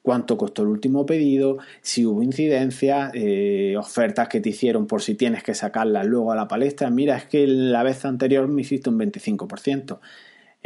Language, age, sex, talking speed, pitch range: Spanish, 30-49, male, 180 wpm, 125-170 Hz